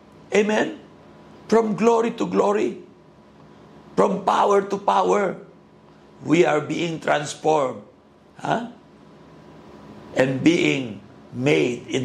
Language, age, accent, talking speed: Filipino, 50-69, native, 90 wpm